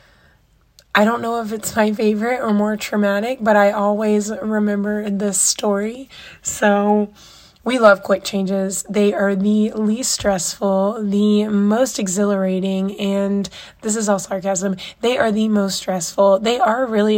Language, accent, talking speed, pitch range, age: English, American, 145 wpm, 200-225 Hz, 20-39